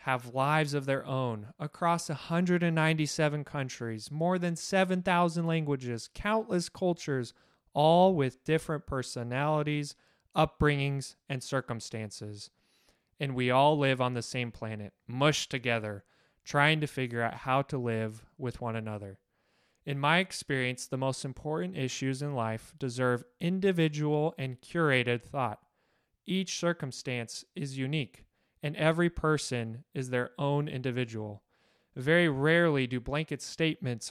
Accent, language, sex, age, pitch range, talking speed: American, English, male, 20-39, 120-155 Hz, 125 wpm